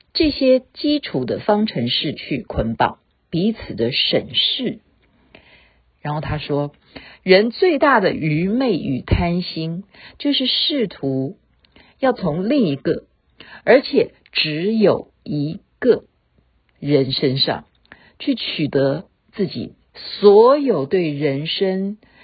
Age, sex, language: 50-69, female, Chinese